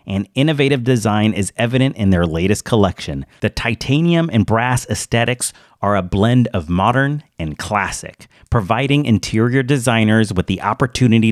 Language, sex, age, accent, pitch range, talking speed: English, male, 40-59, American, 100-130 Hz, 145 wpm